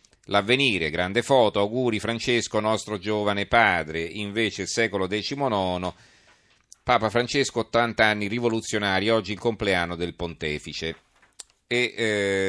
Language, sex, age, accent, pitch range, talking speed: Italian, male, 40-59, native, 90-110 Hz, 115 wpm